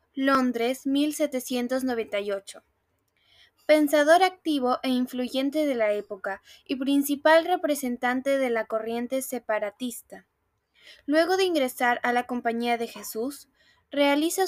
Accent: Mexican